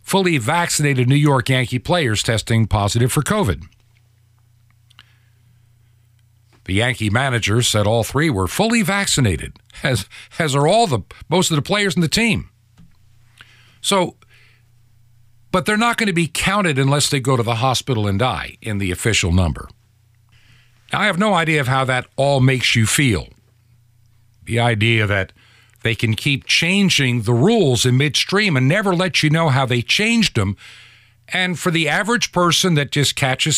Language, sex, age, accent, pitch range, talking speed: English, male, 50-69, American, 115-150 Hz, 165 wpm